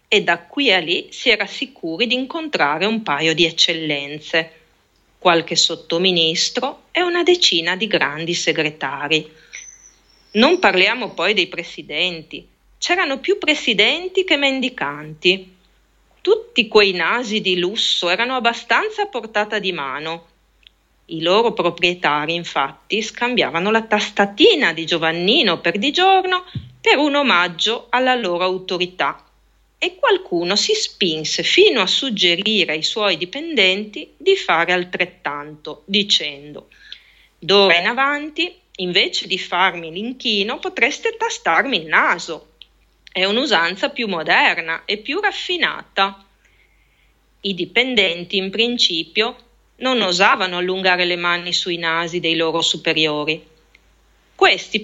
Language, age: Italian, 30-49